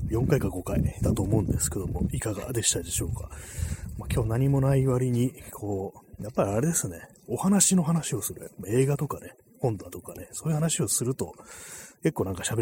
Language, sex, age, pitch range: Japanese, male, 30-49, 95-130 Hz